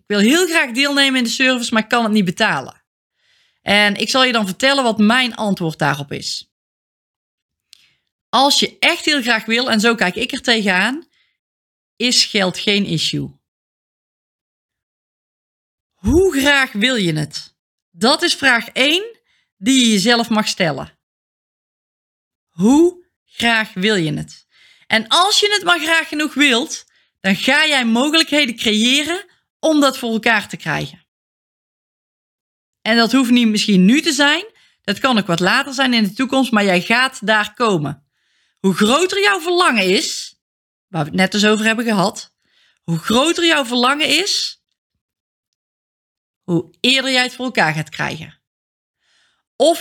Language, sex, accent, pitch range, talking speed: Dutch, female, Dutch, 195-270 Hz, 155 wpm